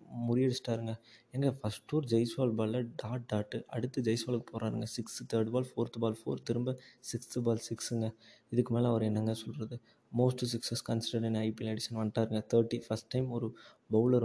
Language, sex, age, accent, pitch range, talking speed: Tamil, male, 20-39, native, 110-120 Hz, 150 wpm